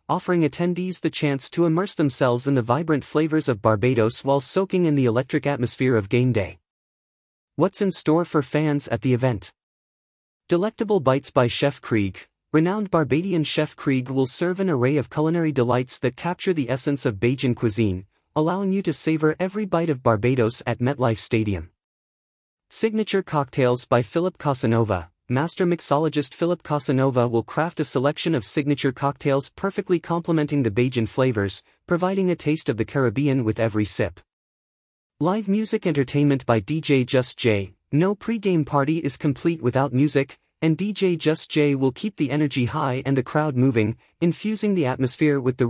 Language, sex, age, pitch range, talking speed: English, male, 30-49, 120-165 Hz, 165 wpm